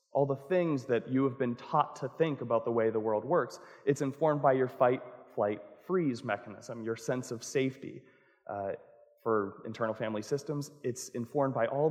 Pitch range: 115-140 Hz